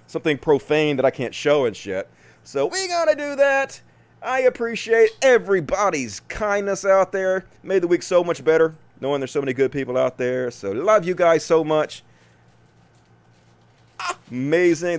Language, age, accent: English, 30-49, American